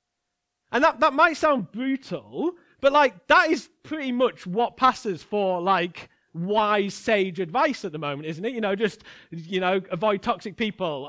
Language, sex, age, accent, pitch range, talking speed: English, male, 40-59, British, 175-265 Hz, 175 wpm